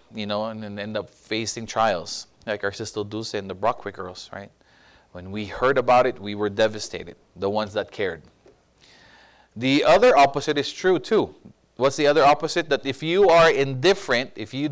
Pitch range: 105-135 Hz